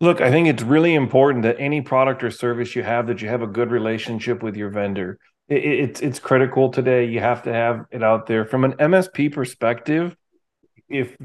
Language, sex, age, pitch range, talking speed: English, male, 30-49, 115-135 Hz, 210 wpm